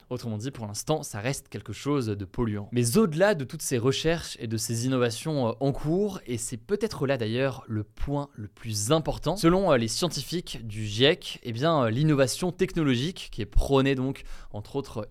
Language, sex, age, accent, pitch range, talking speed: French, male, 20-39, French, 115-150 Hz, 185 wpm